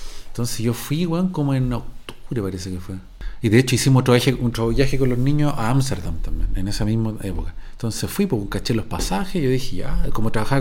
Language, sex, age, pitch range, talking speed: Spanish, male, 40-59, 100-135 Hz, 215 wpm